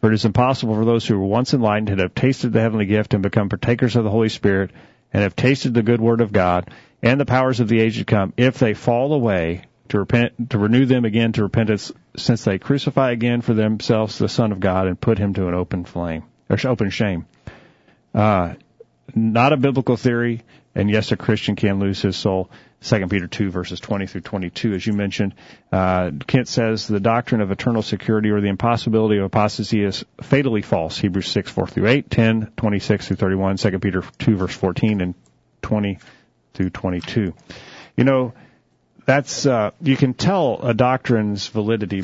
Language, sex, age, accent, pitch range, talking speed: English, male, 40-59, American, 100-120 Hz, 195 wpm